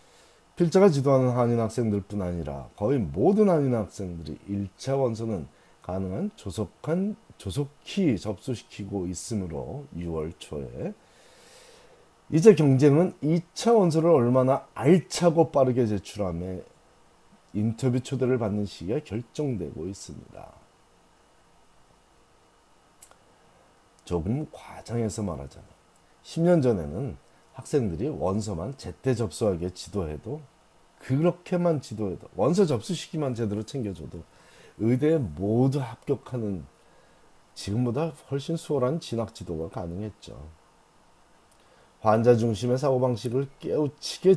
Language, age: Korean, 40-59